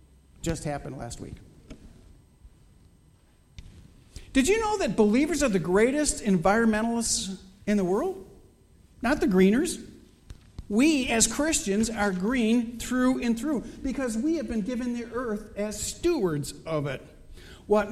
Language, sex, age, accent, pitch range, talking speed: English, male, 50-69, American, 155-225 Hz, 130 wpm